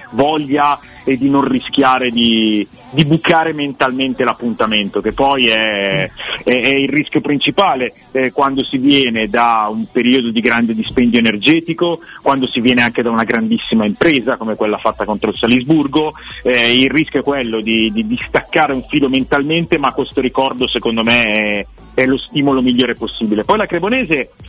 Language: Italian